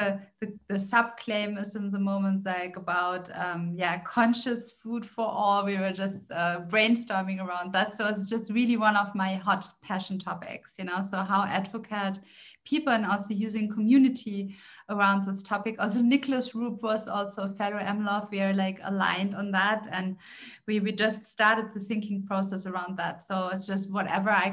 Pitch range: 195-225 Hz